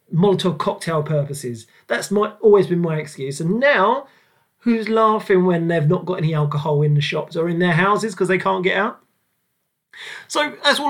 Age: 30-49